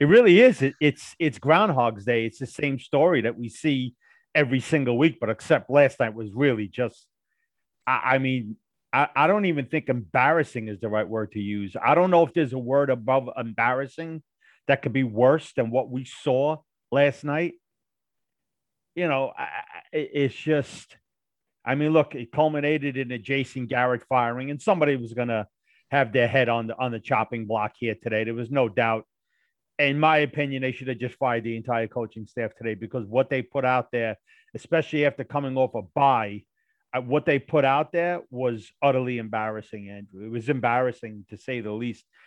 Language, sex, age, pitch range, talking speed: English, male, 40-59, 115-145 Hz, 195 wpm